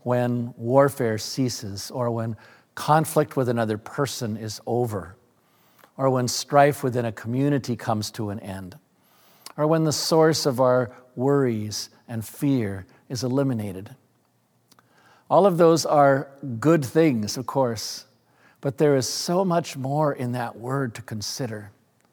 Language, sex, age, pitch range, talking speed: English, male, 50-69, 120-145 Hz, 140 wpm